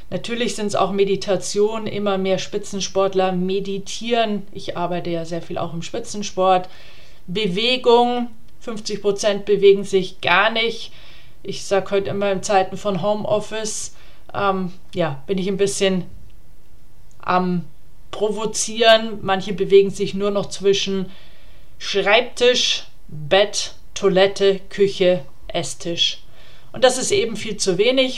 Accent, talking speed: German, 120 wpm